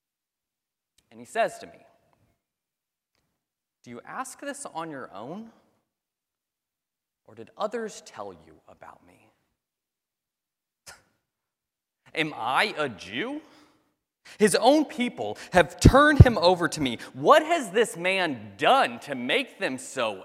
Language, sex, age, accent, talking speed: English, male, 30-49, American, 120 wpm